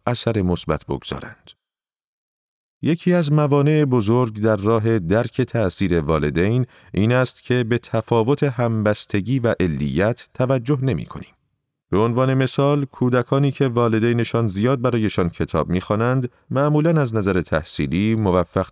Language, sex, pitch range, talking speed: Persian, male, 95-130 Hz, 120 wpm